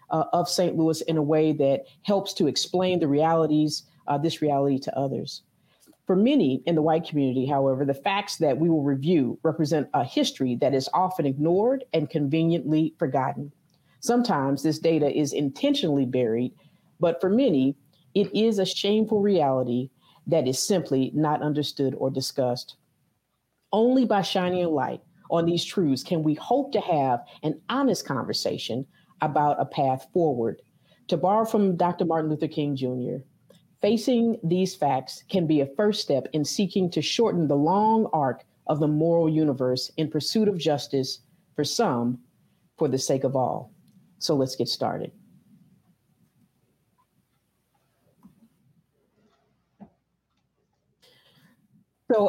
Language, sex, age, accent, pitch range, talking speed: English, female, 40-59, American, 145-190 Hz, 145 wpm